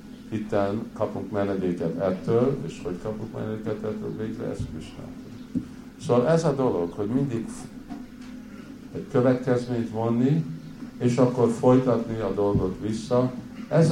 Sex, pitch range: male, 95-130 Hz